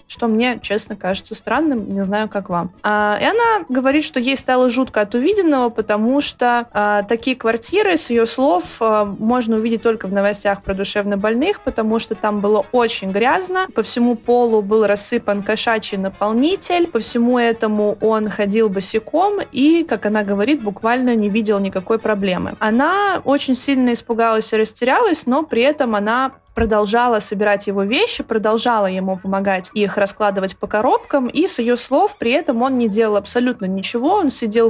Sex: female